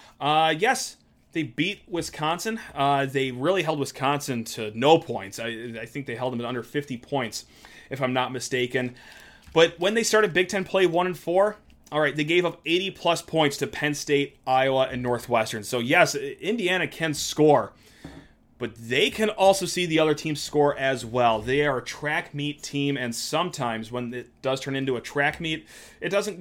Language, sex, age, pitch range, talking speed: English, male, 30-49, 135-175 Hz, 195 wpm